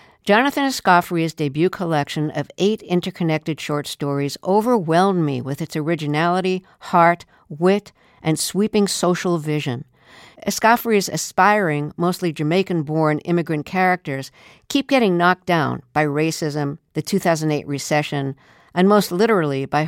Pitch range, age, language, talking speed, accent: 145-190 Hz, 60-79, English, 120 wpm, American